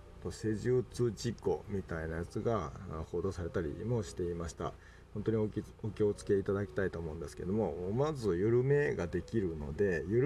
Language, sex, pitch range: Japanese, male, 85-110 Hz